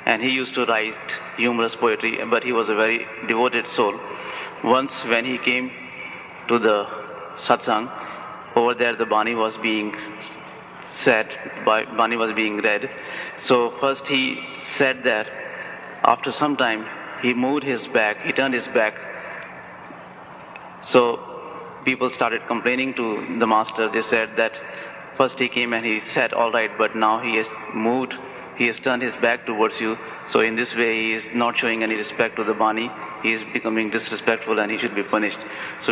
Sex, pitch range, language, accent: male, 110-125 Hz, English, Indian